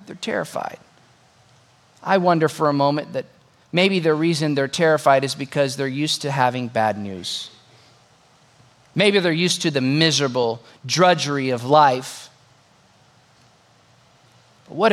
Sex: male